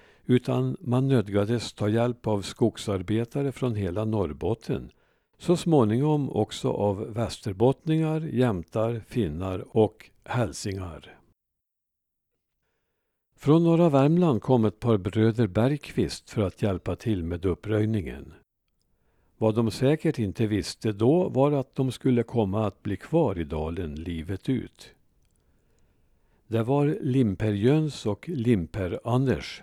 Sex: male